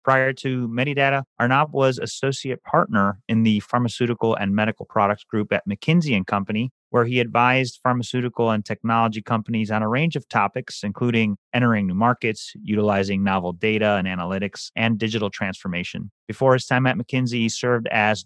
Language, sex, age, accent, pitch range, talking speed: English, male, 30-49, American, 105-125 Hz, 160 wpm